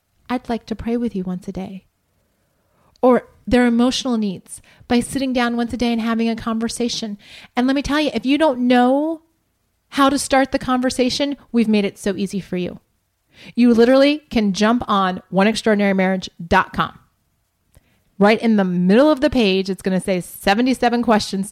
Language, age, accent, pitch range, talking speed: English, 30-49, American, 210-285 Hz, 175 wpm